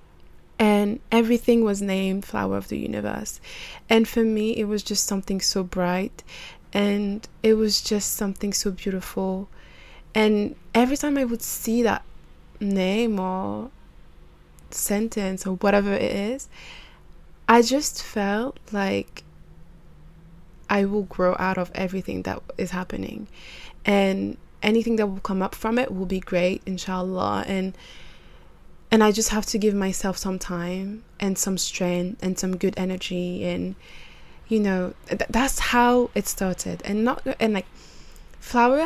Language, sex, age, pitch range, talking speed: English, female, 20-39, 185-215 Hz, 145 wpm